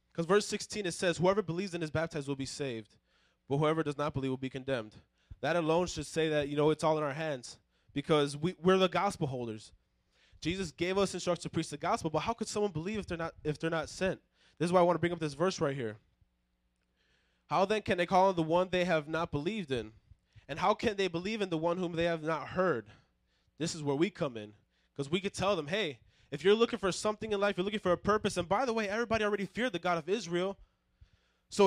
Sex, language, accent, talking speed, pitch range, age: male, English, American, 250 wpm, 150-200 Hz, 20-39